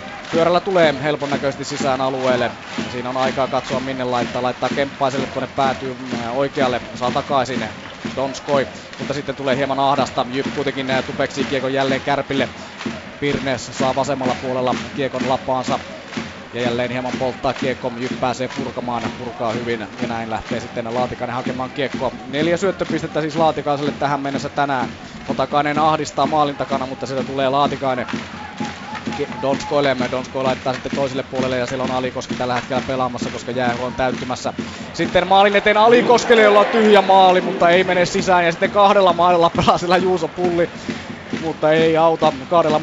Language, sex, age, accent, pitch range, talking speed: Finnish, male, 20-39, native, 130-155 Hz, 155 wpm